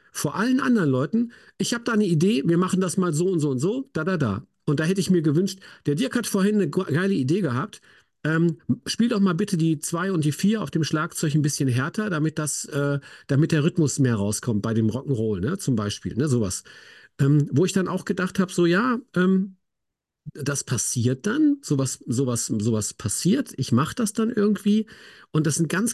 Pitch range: 130-190 Hz